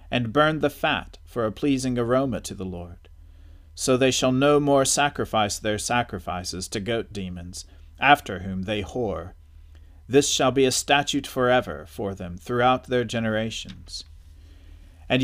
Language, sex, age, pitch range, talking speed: English, male, 40-59, 90-130 Hz, 150 wpm